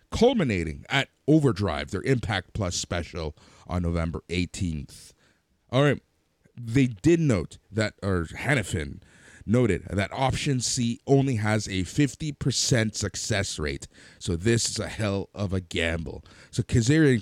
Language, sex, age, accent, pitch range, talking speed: English, male, 30-49, American, 90-115 Hz, 130 wpm